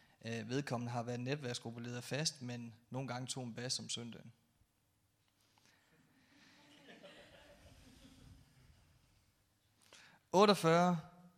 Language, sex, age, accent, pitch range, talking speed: Danish, male, 30-49, native, 115-140 Hz, 80 wpm